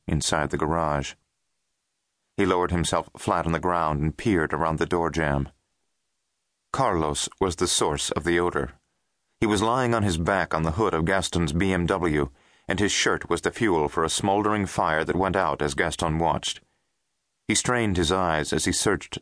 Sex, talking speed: male, 180 wpm